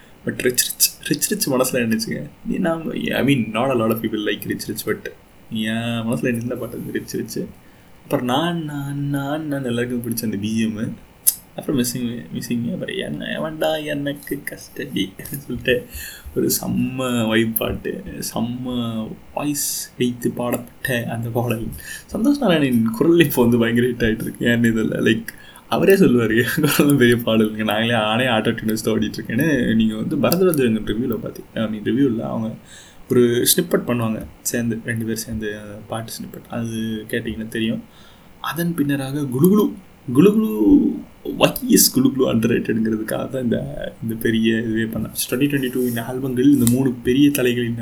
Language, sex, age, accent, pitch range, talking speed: Tamil, male, 20-39, native, 115-145 Hz, 125 wpm